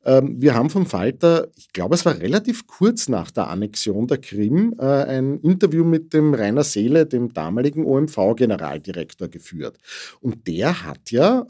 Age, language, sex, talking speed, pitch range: 50-69, German, male, 150 wpm, 125-165 Hz